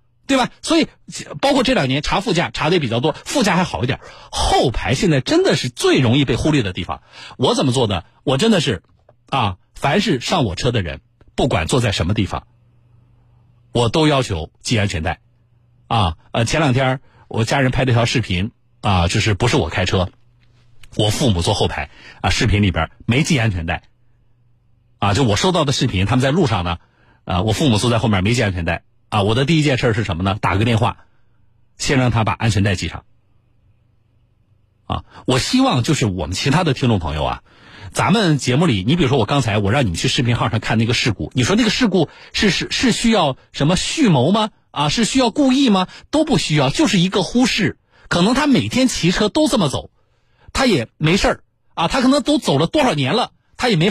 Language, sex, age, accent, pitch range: Chinese, male, 50-69, native, 110-170 Hz